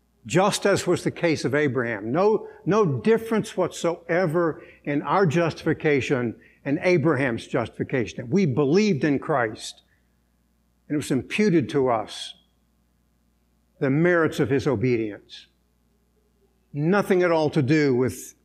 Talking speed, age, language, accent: 125 wpm, 60-79, English, American